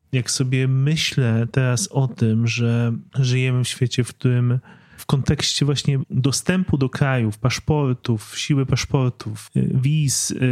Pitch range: 125-150 Hz